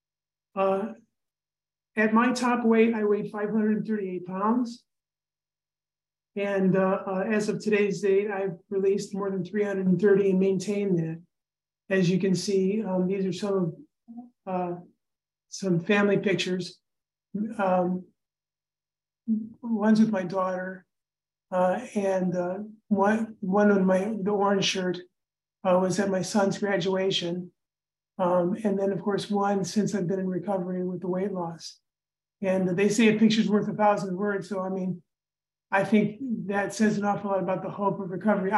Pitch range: 180-210 Hz